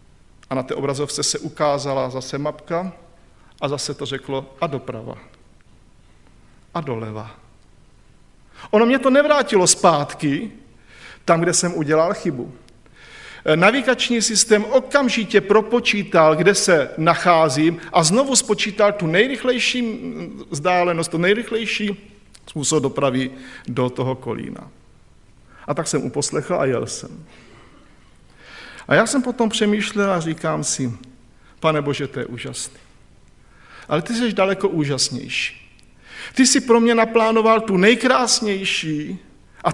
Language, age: Slovak, 50-69